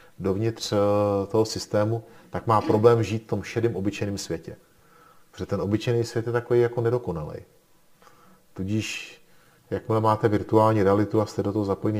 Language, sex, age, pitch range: Czech, male, 40-59, 100-120 Hz